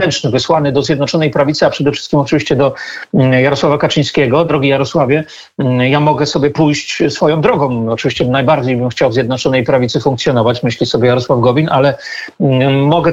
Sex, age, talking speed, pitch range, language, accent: male, 40-59, 150 wpm, 130-155 Hz, Polish, native